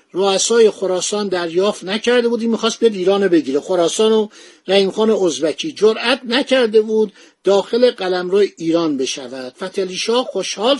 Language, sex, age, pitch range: Persian, male, 50-69, 180-230 Hz